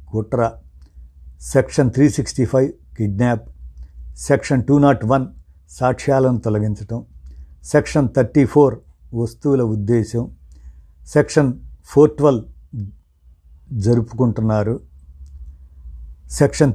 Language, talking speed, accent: Telugu, 80 wpm, native